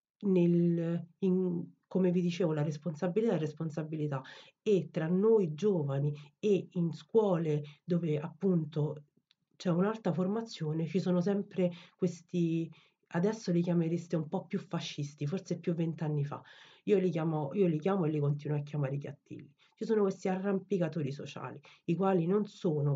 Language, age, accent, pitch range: Italian, 40-59, native, 145-180 Hz